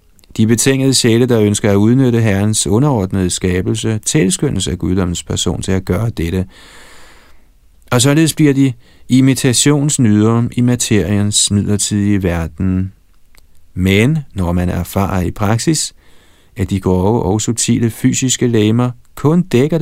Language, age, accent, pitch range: Danish, 40-59, native, 90-120 Hz